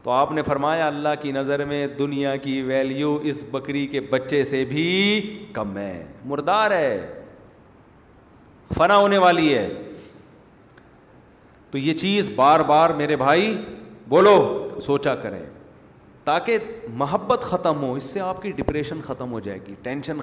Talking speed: 145 wpm